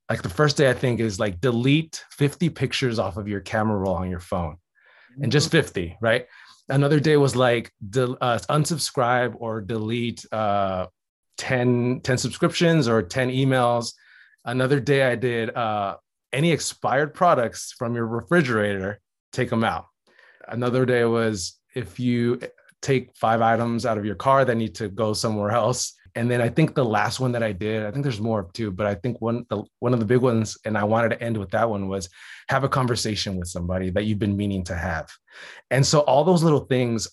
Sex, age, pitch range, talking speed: male, 30-49, 110-135 Hz, 190 wpm